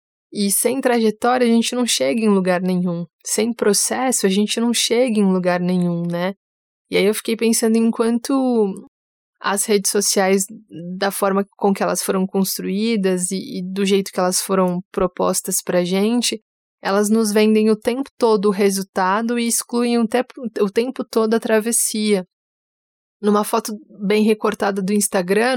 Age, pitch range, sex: 20-39, 190-220 Hz, female